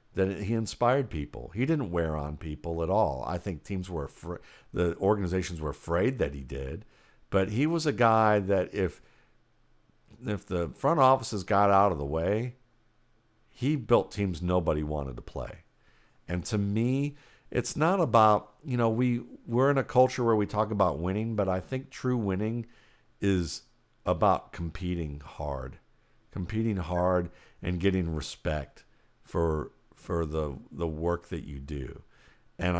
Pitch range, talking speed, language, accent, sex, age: 85-110 Hz, 160 wpm, English, American, male, 50-69